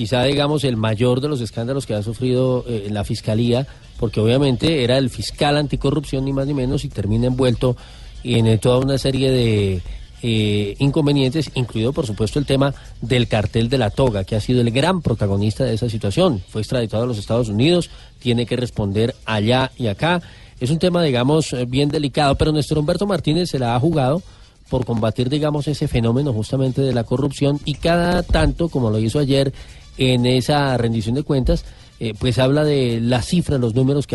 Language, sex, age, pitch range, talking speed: Spanish, male, 40-59, 115-140 Hz, 190 wpm